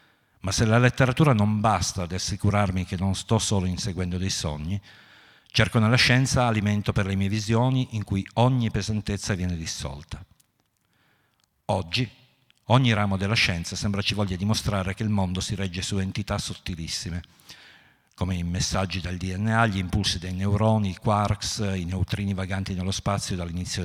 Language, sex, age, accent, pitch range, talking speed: Italian, male, 50-69, native, 95-110 Hz, 160 wpm